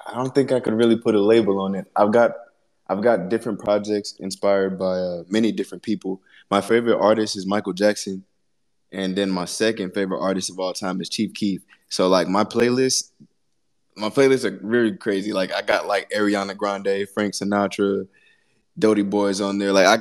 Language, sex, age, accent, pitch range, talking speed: English, male, 20-39, American, 95-110 Hz, 190 wpm